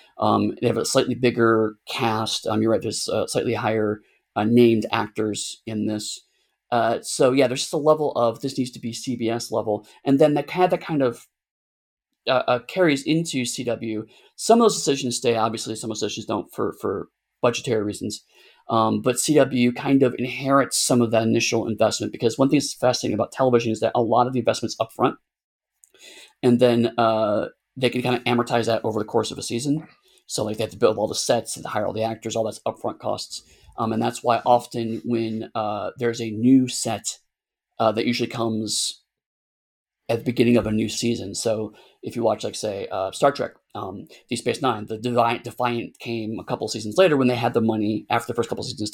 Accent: American